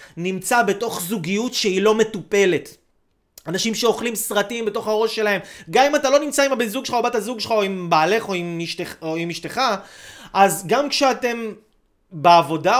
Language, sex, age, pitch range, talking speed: Hebrew, male, 30-49, 195-250 Hz, 165 wpm